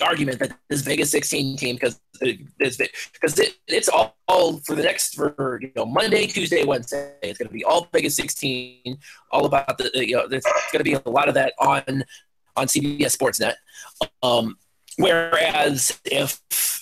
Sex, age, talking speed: male, 30-49, 175 wpm